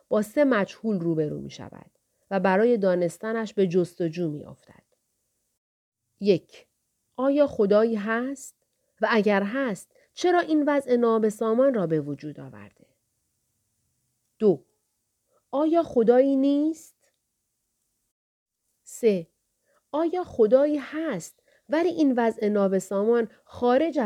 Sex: female